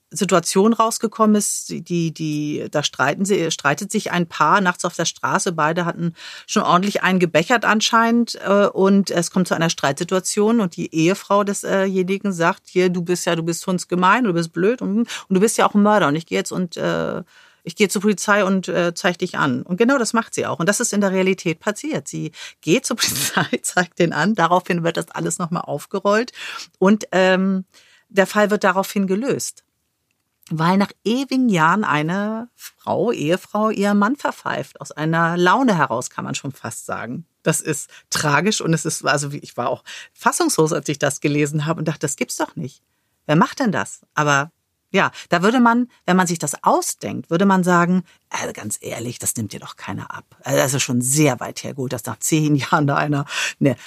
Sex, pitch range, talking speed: female, 160-205 Hz, 205 wpm